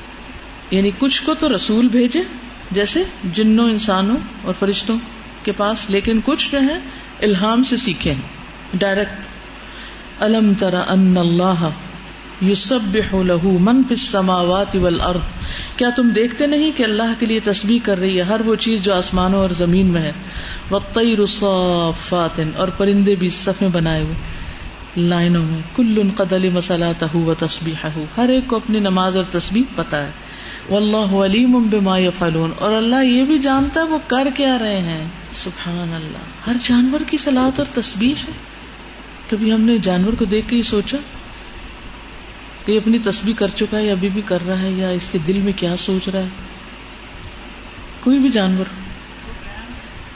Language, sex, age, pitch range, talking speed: Urdu, female, 50-69, 185-230 Hz, 155 wpm